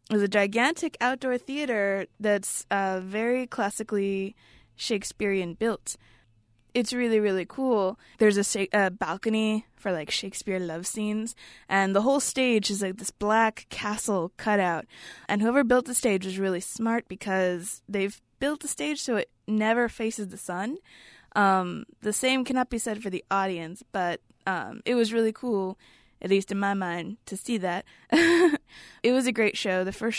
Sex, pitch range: female, 190-225 Hz